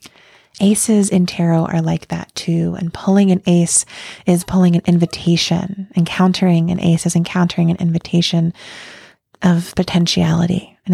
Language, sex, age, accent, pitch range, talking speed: English, female, 20-39, American, 170-190 Hz, 135 wpm